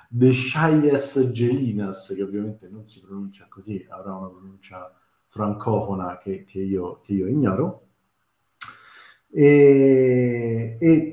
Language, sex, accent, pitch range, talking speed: Italian, male, native, 105-130 Hz, 115 wpm